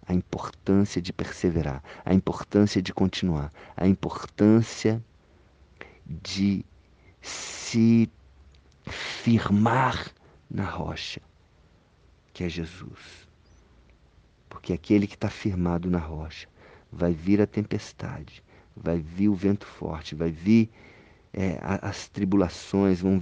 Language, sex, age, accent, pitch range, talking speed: Portuguese, male, 50-69, Brazilian, 85-105 Hz, 100 wpm